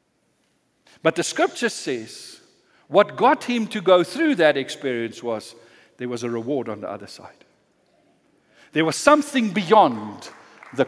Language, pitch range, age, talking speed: English, 150-215 Hz, 60-79, 145 wpm